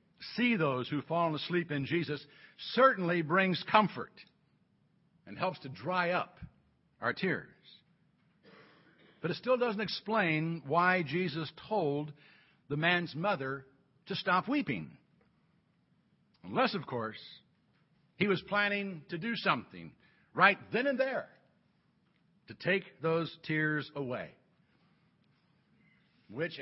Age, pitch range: 60-79, 145-205 Hz